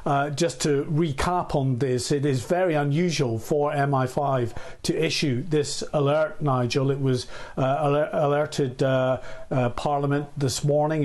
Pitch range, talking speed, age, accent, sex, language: 130-155 Hz, 140 wpm, 50-69, British, male, English